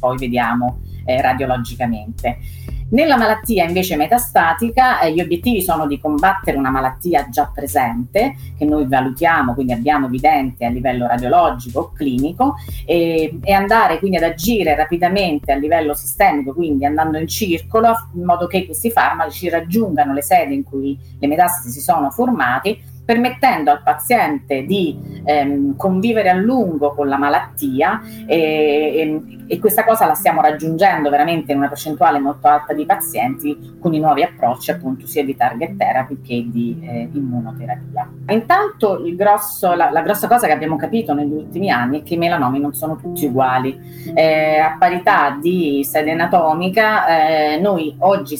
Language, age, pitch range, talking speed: Italian, 30-49, 140-185 Hz, 155 wpm